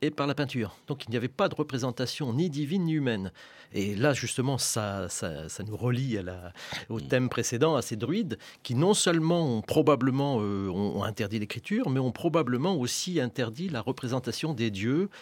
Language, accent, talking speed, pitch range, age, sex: French, French, 190 wpm, 110-155 Hz, 40-59, male